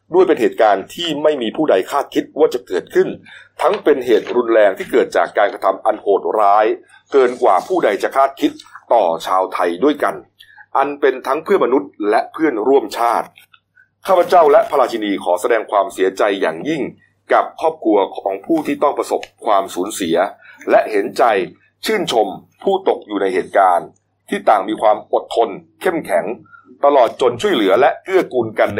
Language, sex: Thai, male